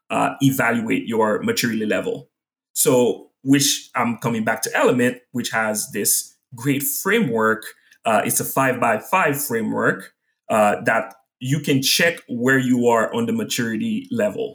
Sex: male